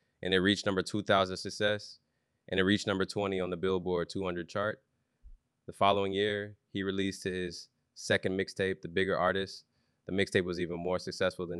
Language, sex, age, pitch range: English, male, 20-39, 85-95 Hz